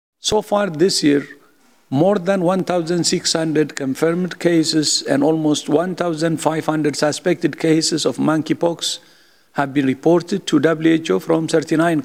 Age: 50-69